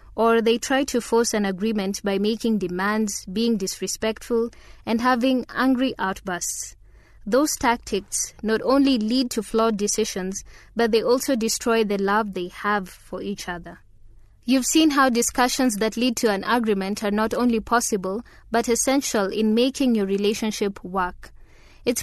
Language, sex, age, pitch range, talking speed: English, female, 20-39, 200-240 Hz, 155 wpm